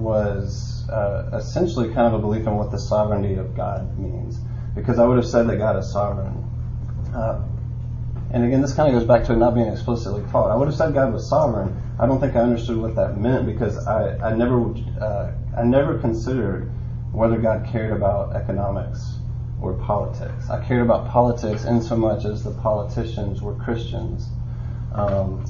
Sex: male